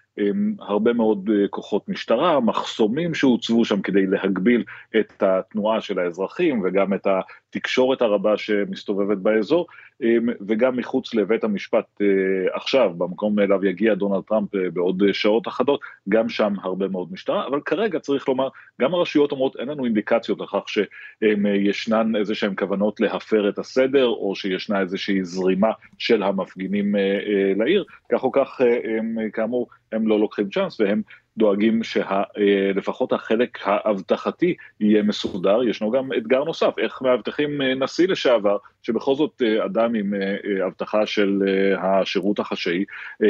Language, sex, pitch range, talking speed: Hebrew, male, 100-120 Hz, 130 wpm